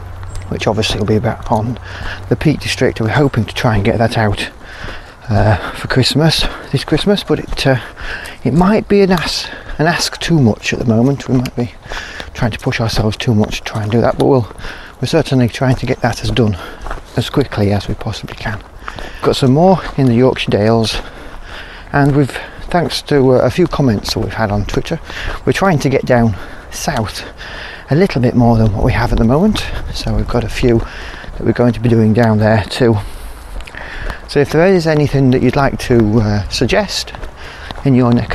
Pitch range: 105-135 Hz